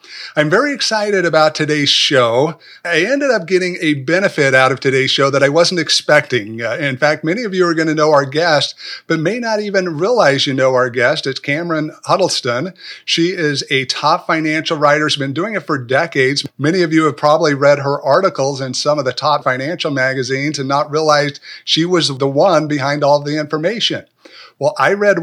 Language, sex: English, male